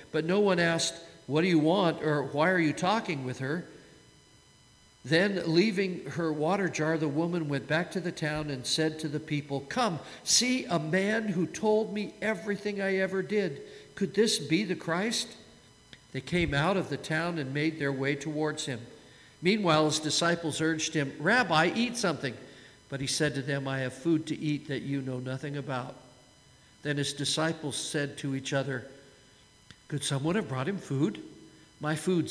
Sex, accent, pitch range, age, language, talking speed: male, American, 140-180 Hz, 50-69, English, 180 wpm